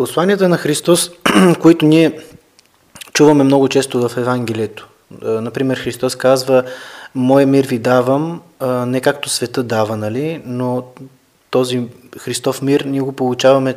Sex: male